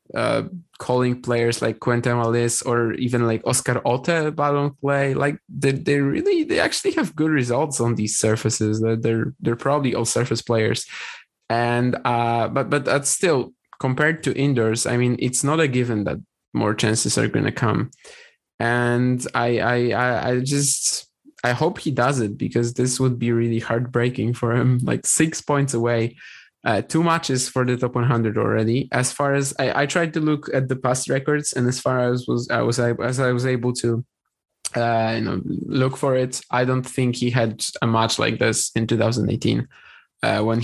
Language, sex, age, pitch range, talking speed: English, male, 20-39, 115-130 Hz, 185 wpm